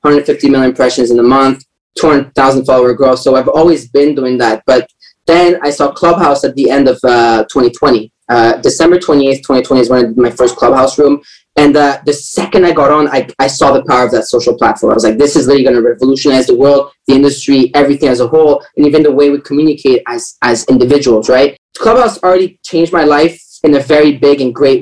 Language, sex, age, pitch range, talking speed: English, male, 20-39, 130-170 Hz, 220 wpm